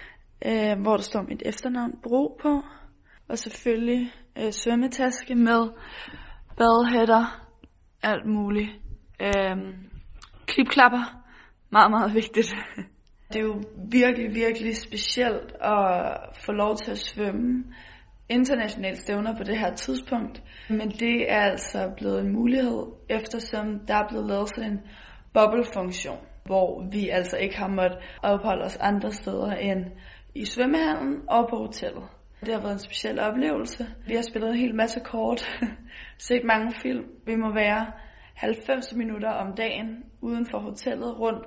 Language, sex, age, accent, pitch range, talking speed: Danish, female, 20-39, native, 210-245 Hz, 140 wpm